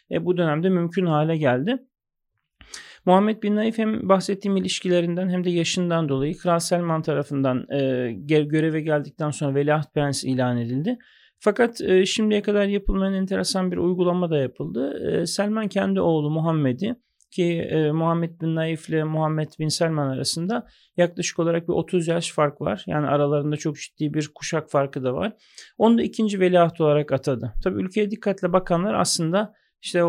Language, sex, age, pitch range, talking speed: Turkish, male, 40-59, 150-185 Hz, 160 wpm